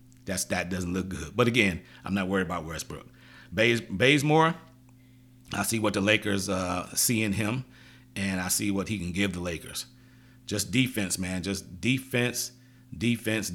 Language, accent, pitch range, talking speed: English, American, 95-125 Hz, 170 wpm